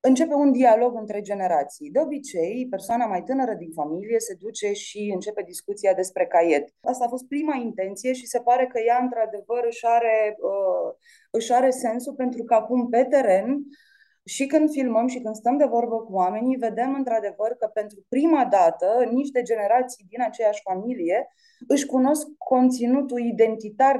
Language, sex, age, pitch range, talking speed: Romanian, female, 20-39, 210-260 Hz, 160 wpm